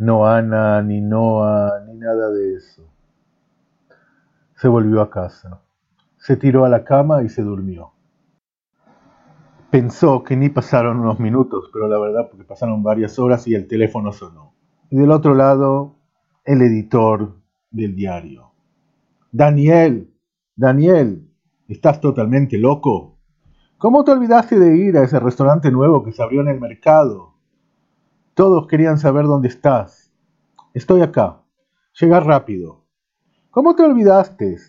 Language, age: Spanish, 40-59